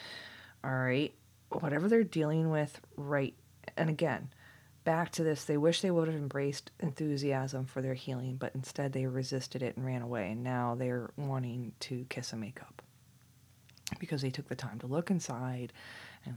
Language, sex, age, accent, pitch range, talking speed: English, female, 30-49, American, 120-140 Hz, 170 wpm